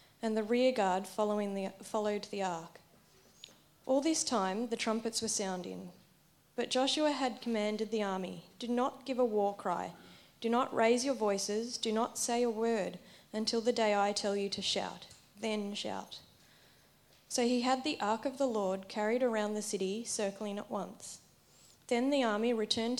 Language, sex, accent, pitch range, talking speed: English, female, Australian, 200-235 Hz, 175 wpm